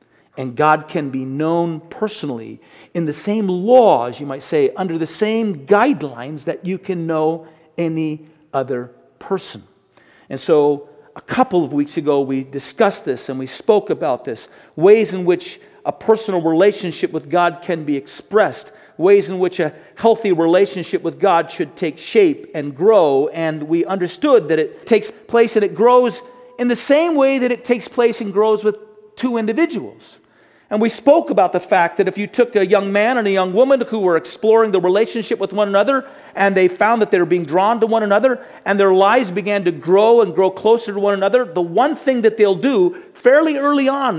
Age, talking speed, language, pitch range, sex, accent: 50-69, 195 wpm, English, 160-230 Hz, male, American